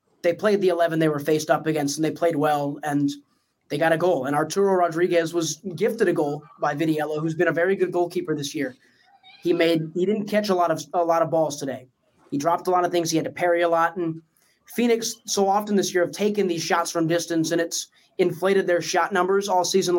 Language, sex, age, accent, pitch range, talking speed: English, male, 20-39, American, 160-195 Hz, 240 wpm